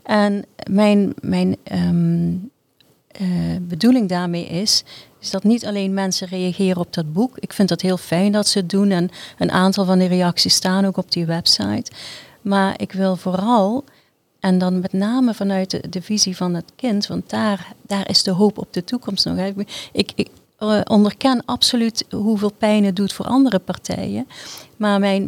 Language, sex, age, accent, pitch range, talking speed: Dutch, female, 40-59, Dutch, 185-210 Hz, 185 wpm